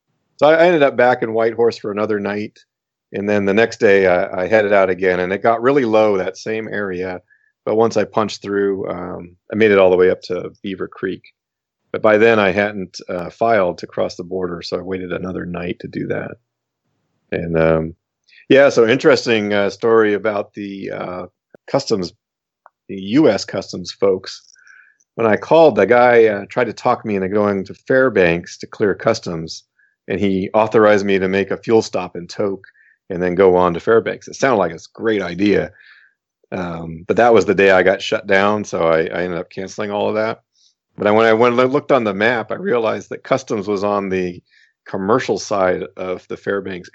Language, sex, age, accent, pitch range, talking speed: English, male, 40-59, American, 90-110 Hz, 205 wpm